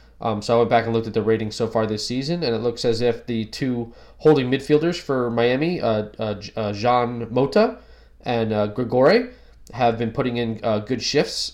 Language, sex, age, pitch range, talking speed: English, male, 20-39, 105-130 Hz, 205 wpm